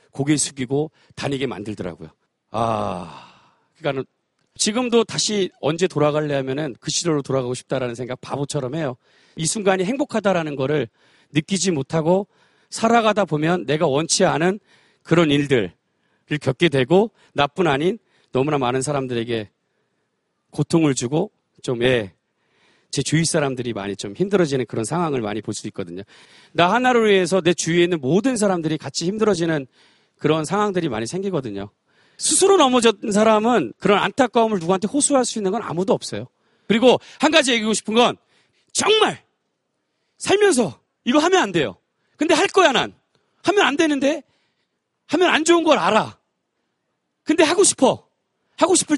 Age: 40-59